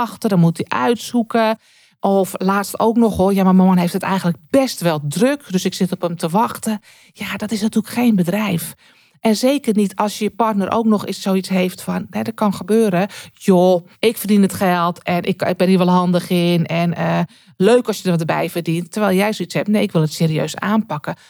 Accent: Dutch